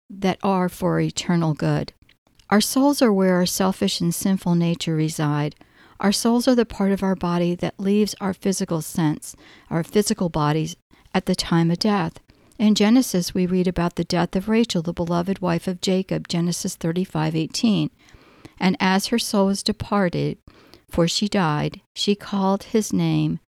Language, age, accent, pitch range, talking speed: English, 60-79, American, 165-200 Hz, 170 wpm